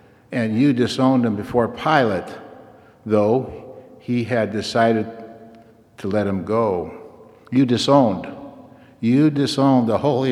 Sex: male